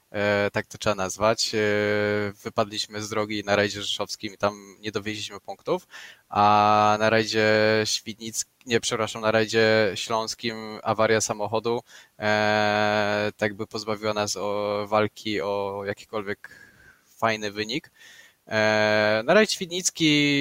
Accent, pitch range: native, 105-120 Hz